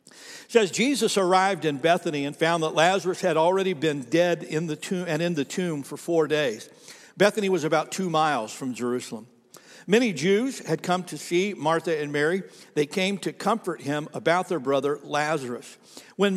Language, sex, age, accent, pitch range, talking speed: English, male, 60-79, American, 140-185 Hz, 185 wpm